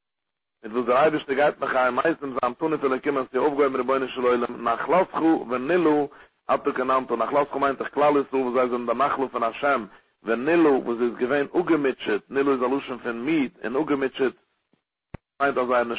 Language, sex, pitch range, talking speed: English, male, 125-145 Hz, 125 wpm